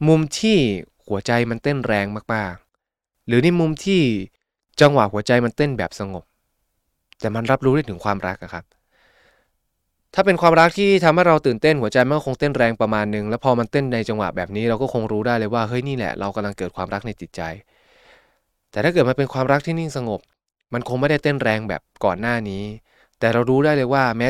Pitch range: 100-135 Hz